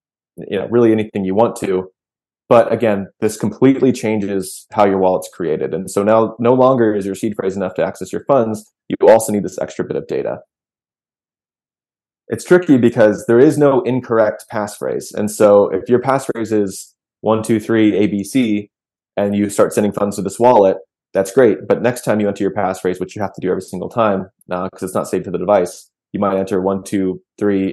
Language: English